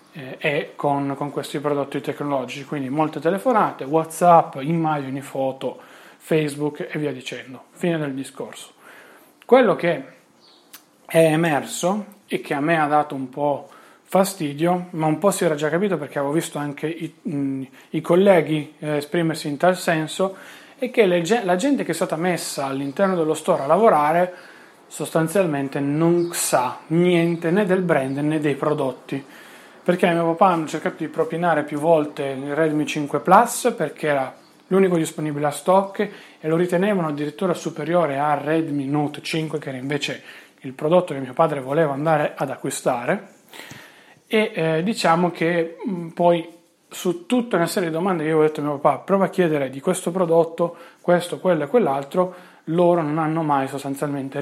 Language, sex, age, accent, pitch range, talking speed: Italian, male, 30-49, native, 145-175 Hz, 160 wpm